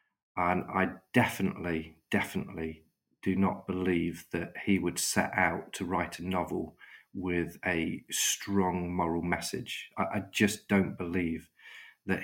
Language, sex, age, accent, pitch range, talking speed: English, male, 40-59, British, 85-105 Hz, 130 wpm